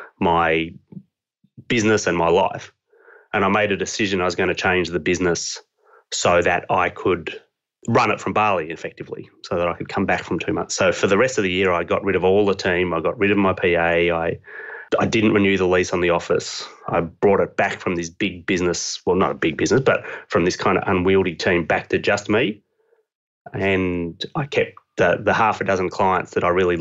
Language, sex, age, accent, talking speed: English, male, 30-49, Australian, 225 wpm